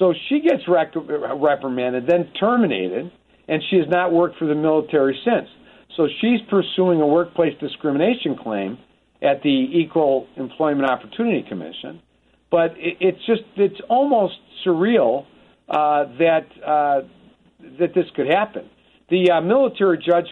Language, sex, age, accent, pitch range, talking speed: English, male, 50-69, American, 145-190 Hz, 135 wpm